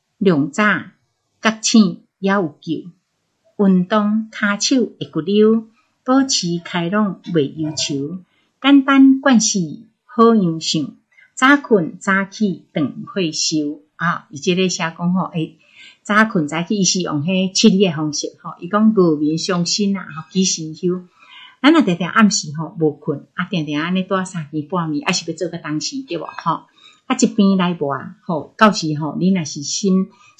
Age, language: 60-79, Chinese